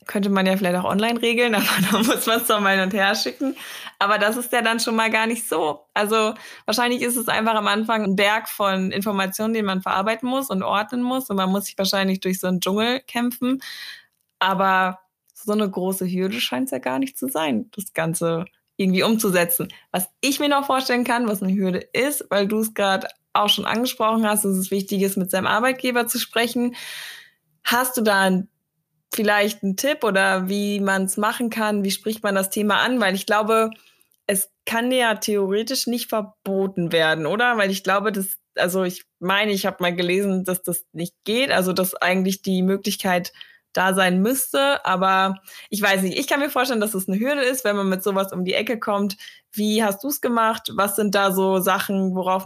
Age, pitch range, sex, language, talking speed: 20-39, 190-225 Hz, female, German, 210 wpm